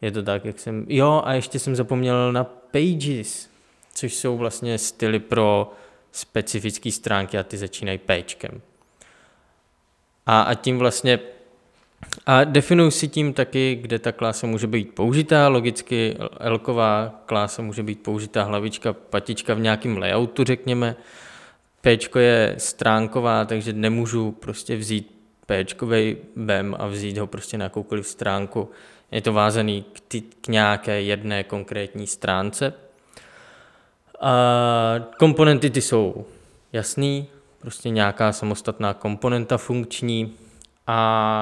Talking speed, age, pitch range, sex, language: 125 wpm, 20-39, 105-125 Hz, male, Czech